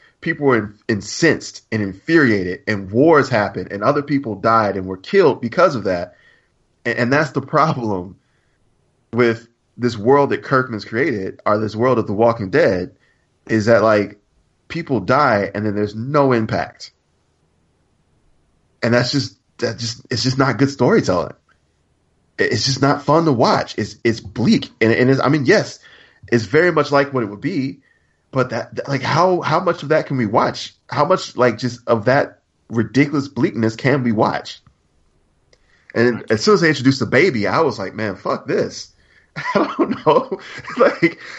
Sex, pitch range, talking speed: male, 110-140 Hz, 175 wpm